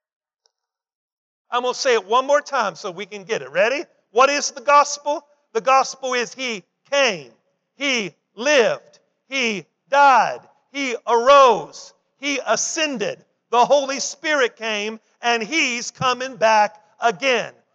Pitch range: 225-275 Hz